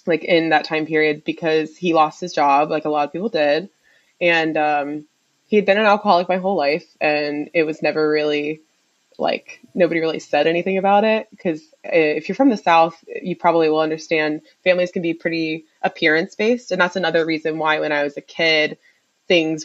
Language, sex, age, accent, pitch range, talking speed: English, female, 20-39, American, 150-185 Hz, 200 wpm